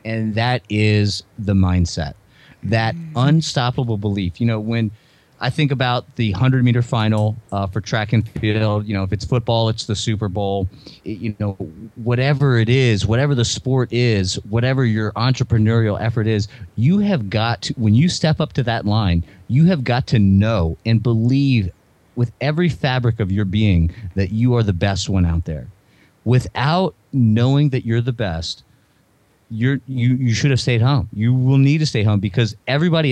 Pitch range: 105-130 Hz